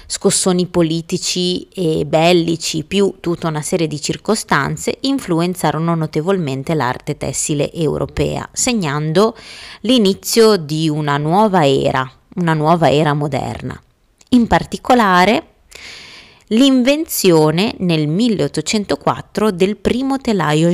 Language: Italian